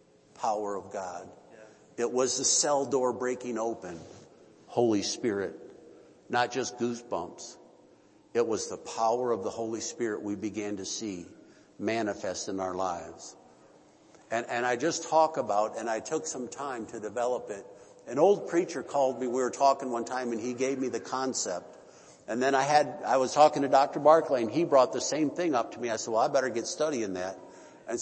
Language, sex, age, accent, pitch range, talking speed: English, male, 60-79, American, 115-135 Hz, 190 wpm